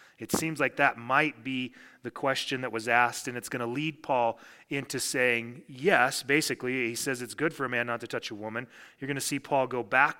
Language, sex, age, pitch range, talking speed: English, male, 30-49, 115-140 Hz, 235 wpm